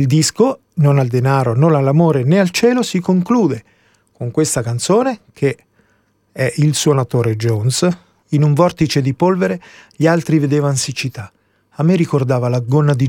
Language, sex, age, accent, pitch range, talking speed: Italian, male, 40-59, native, 120-160 Hz, 160 wpm